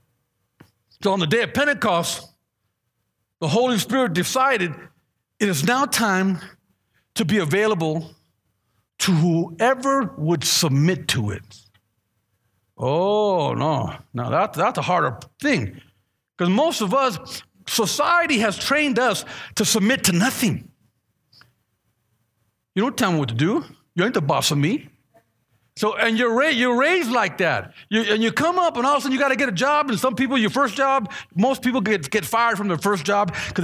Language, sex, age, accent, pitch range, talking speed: English, male, 50-69, American, 155-225 Hz, 170 wpm